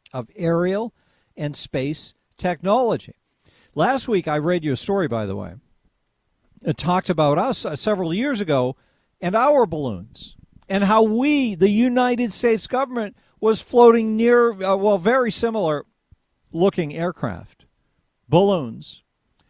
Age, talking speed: 50-69, 130 wpm